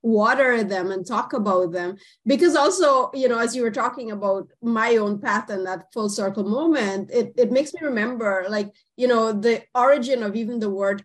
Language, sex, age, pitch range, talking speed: English, female, 30-49, 215-260 Hz, 200 wpm